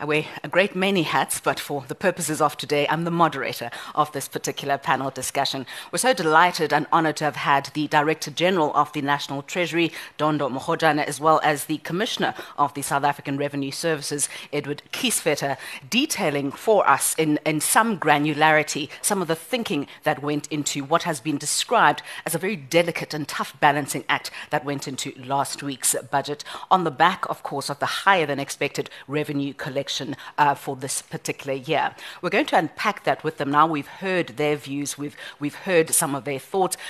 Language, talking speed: English, 185 wpm